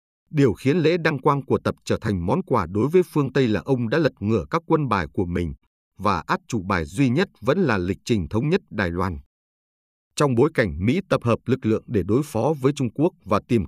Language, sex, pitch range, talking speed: Vietnamese, male, 100-140 Hz, 240 wpm